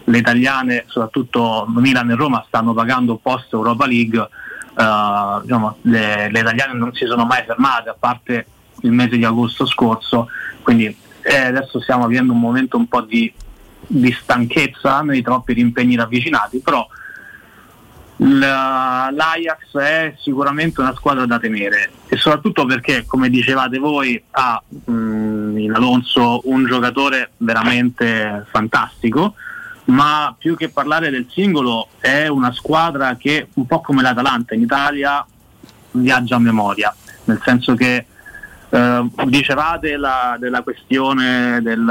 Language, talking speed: Italian, 135 wpm